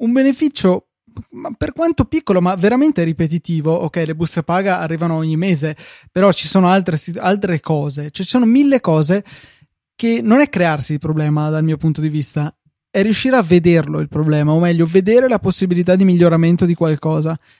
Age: 20-39